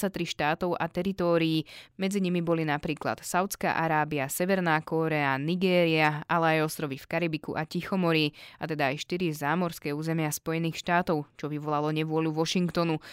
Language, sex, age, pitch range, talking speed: Slovak, female, 20-39, 155-175 Hz, 140 wpm